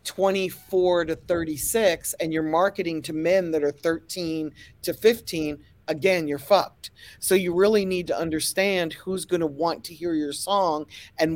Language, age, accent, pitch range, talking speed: English, 40-59, American, 150-190 Hz, 165 wpm